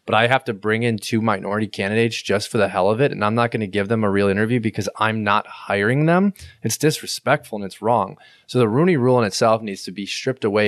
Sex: male